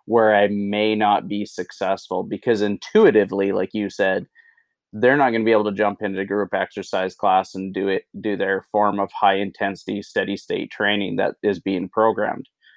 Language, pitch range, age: English, 100-115 Hz, 20-39